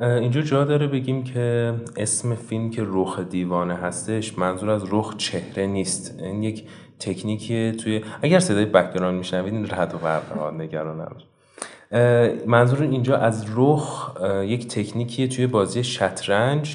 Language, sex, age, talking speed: Persian, male, 30-49, 135 wpm